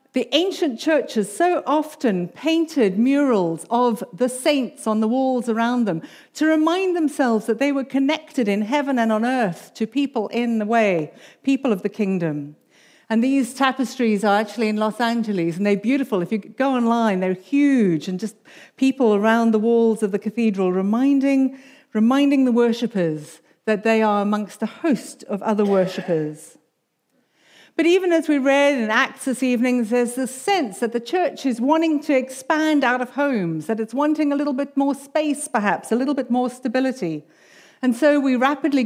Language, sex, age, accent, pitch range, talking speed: English, female, 50-69, British, 210-275 Hz, 180 wpm